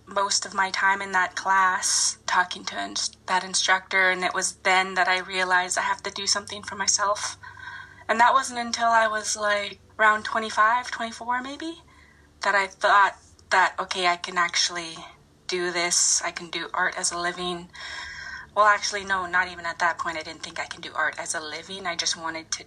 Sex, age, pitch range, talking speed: female, 20-39, 180-210 Hz, 200 wpm